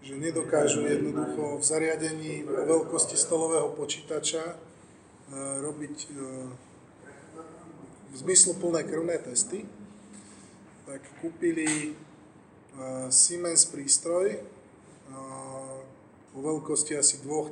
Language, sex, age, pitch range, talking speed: Slovak, male, 20-39, 135-160 Hz, 80 wpm